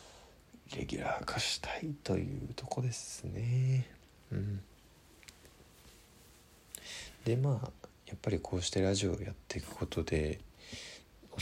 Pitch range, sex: 80-110 Hz, male